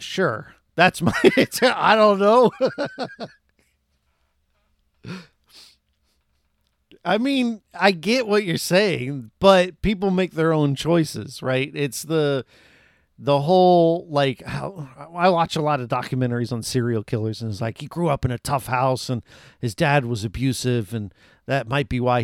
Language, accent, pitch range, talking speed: English, American, 115-165 Hz, 150 wpm